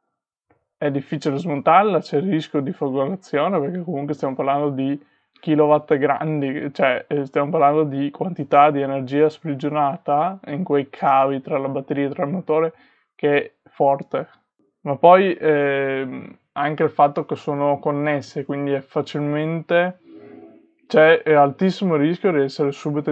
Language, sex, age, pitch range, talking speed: Italian, male, 20-39, 140-155 Hz, 140 wpm